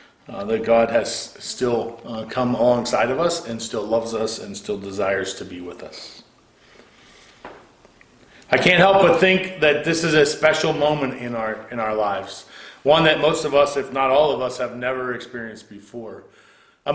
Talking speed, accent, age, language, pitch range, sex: 180 wpm, American, 40-59, English, 120-155 Hz, male